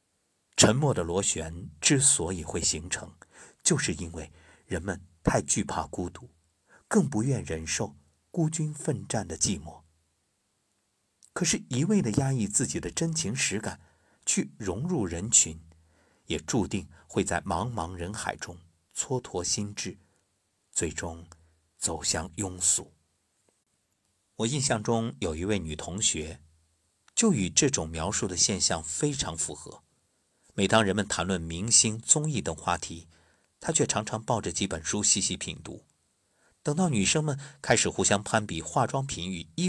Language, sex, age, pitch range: Chinese, male, 50-69, 80-115 Hz